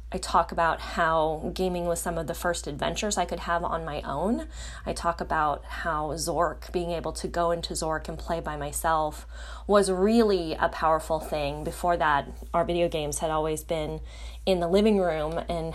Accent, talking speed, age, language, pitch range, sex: American, 190 wpm, 20-39, English, 150-180 Hz, female